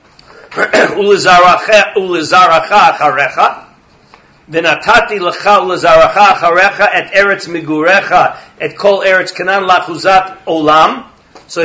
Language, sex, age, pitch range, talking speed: English, male, 50-69, 155-195 Hz, 90 wpm